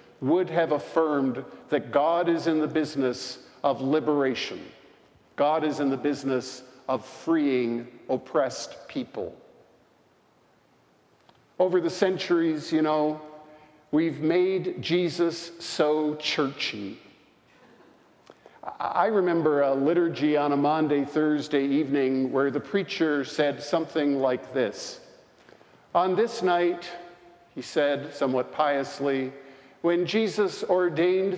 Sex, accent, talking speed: male, American, 105 wpm